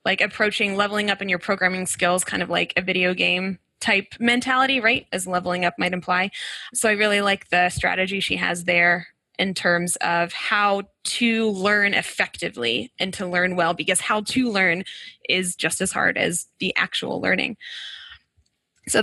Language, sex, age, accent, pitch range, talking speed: English, female, 10-29, American, 185-235 Hz, 175 wpm